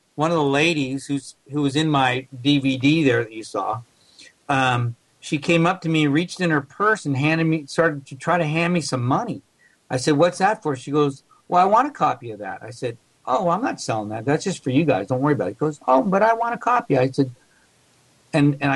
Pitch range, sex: 135-170 Hz, male